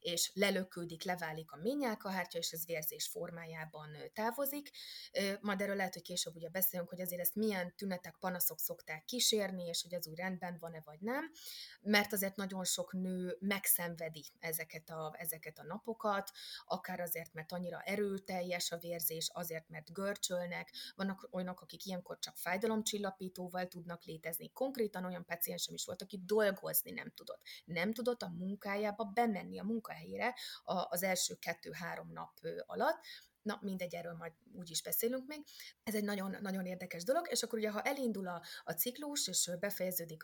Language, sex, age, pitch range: Hungarian, female, 30-49, 170-215 Hz